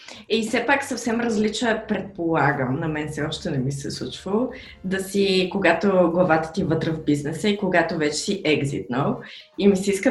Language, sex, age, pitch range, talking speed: Bulgarian, female, 20-39, 165-240 Hz, 190 wpm